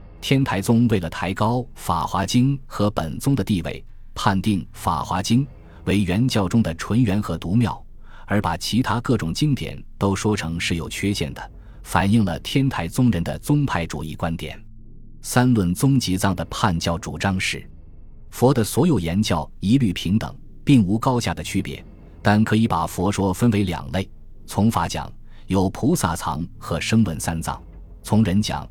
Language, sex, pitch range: Chinese, male, 85-115 Hz